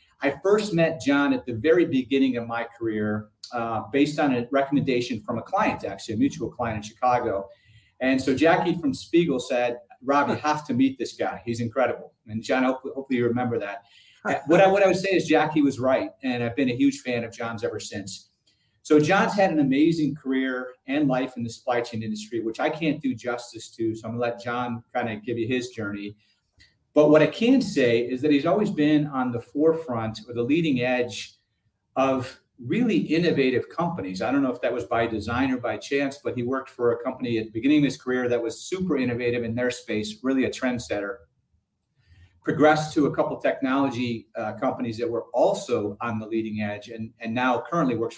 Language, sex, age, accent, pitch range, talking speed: English, male, 40-59, American, 115-145 Hz, 210 wpm